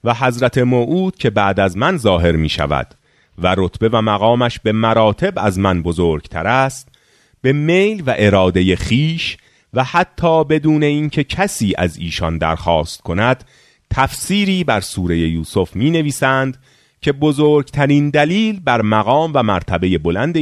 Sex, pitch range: male, 90-135 Hz